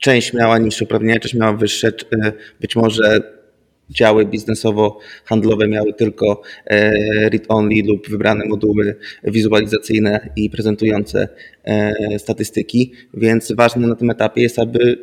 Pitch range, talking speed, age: 110-125 Hz, 110 wpm, 20-39